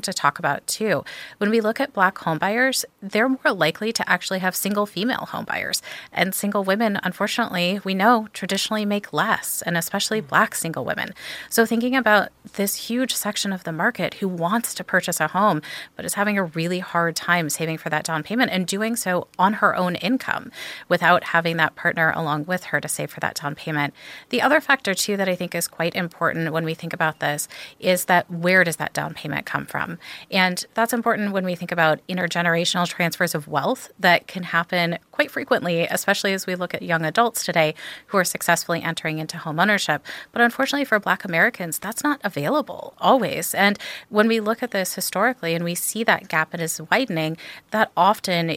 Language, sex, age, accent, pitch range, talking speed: English, female, 30-49, American, 165-210 Hz, 200 wpm